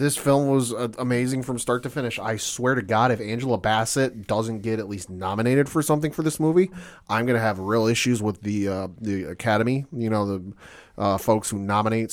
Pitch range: 105-125 Hz